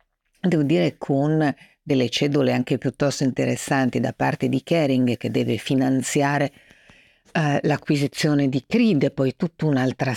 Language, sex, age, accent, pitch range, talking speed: Italian, female, 50-69, native, 125-150 Hz, 135 wpm